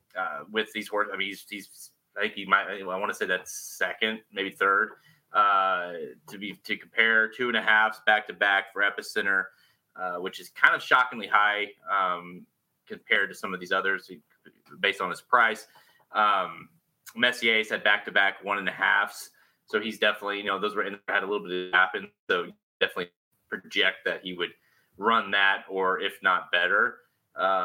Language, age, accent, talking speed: English, 30-49, American, 195 wpm